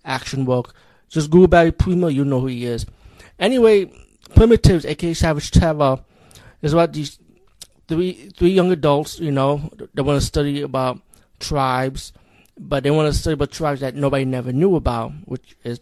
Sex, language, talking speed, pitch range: male, English, 175 wpm, 125-150 Hz